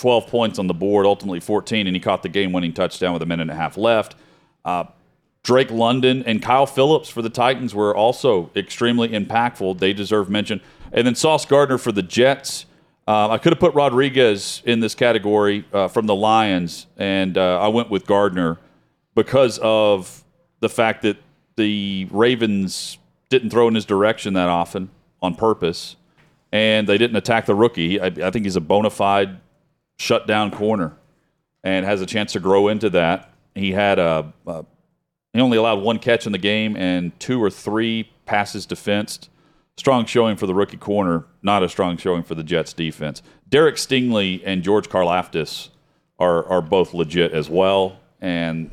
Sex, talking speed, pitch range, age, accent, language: male, 180 wpm, 90-115 Hz, 40-59, American, English